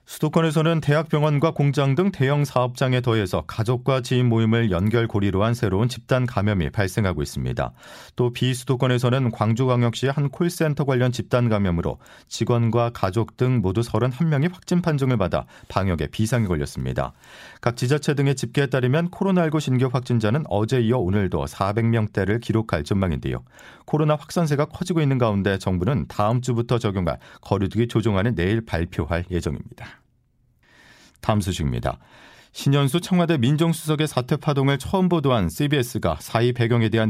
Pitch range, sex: 105-145 Hz, male